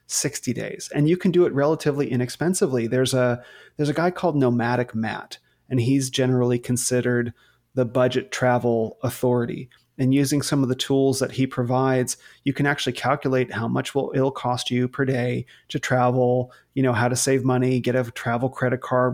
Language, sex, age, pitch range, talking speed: English, male, 30-49, 125-145 Hz, 185 wpm